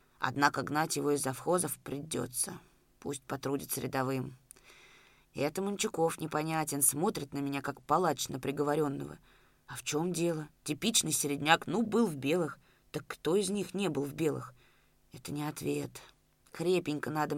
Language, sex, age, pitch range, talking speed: Russian, female, 20-39, 140-180 Hz, 150 wpm